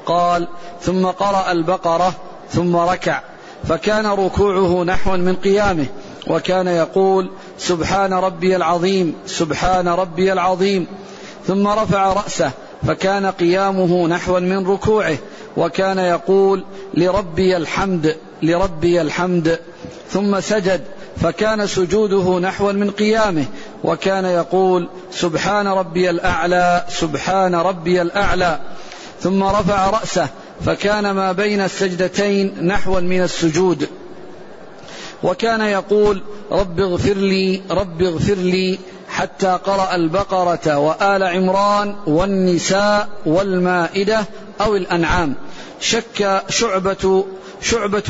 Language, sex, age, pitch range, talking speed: Arabic, male, 50-69, 175-195 Hz, 95 wpm